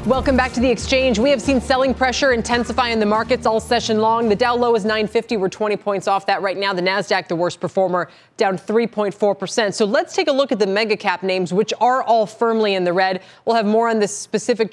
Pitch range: 190-250 Hz